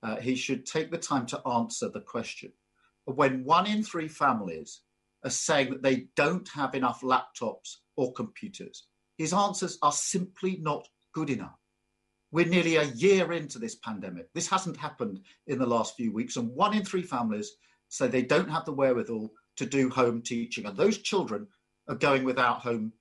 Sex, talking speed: male, 180 wpm